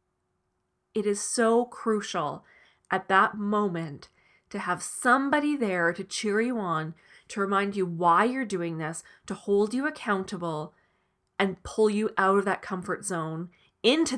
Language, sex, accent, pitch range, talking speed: English, female, American, 175-225 Hz, 150 wpm